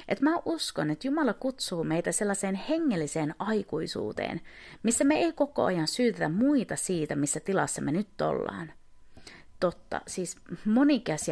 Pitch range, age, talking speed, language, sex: 170-260 Hz, 30-49, 140 wpm, Finnish, female